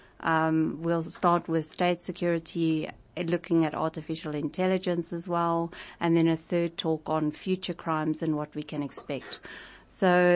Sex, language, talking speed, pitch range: female, English, 150 wpm, 160-180 Hz